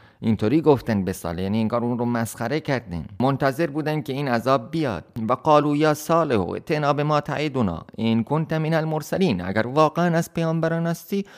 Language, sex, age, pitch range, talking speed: Persian, male, 30-49, 110-140 Hz, 175 wpm